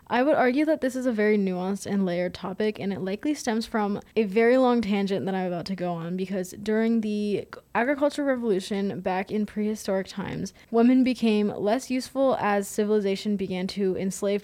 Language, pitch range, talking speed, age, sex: English, 190-230 Hz, 185 wpm, 20-39, female